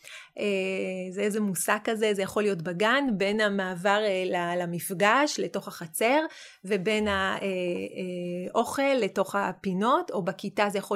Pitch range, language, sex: 195-270 Hz, Hebrew, female